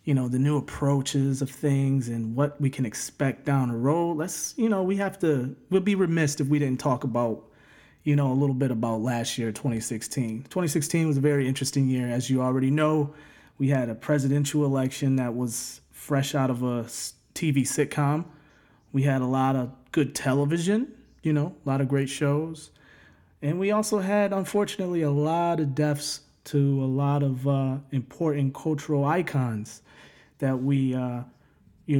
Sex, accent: male, American